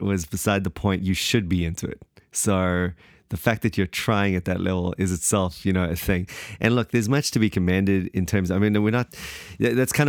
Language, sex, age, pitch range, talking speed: English, male, 30-49, 90-100 Hz, 240 wpm